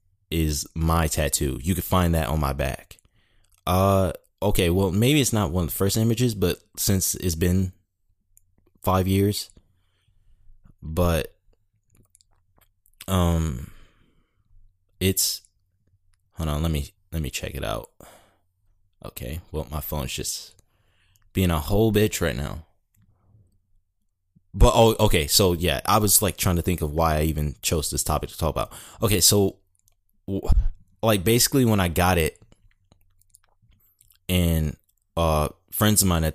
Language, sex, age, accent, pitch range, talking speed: English, male, 20-39, American, 80-100 Hz, 140 wpm